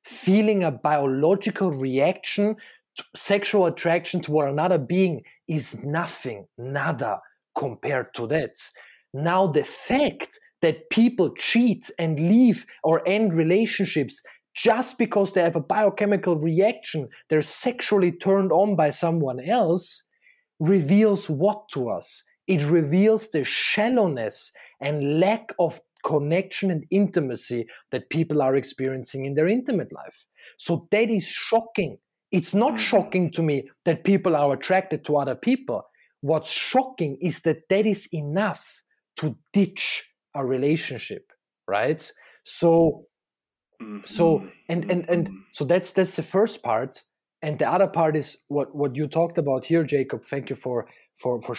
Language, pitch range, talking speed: English, 150-200 Hz, 135 wpm